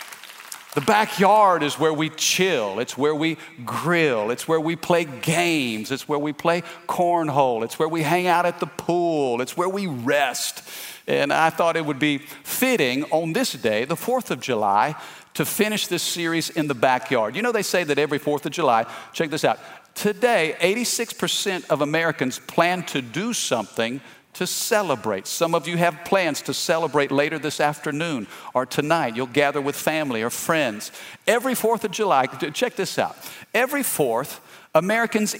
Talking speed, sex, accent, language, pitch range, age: 175 wpm, male, American, English, 150-195 Hz, 50-69